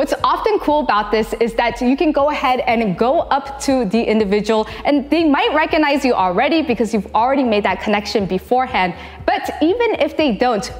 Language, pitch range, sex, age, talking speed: English, 210-275 Hz, female, 20-39, 195 wpm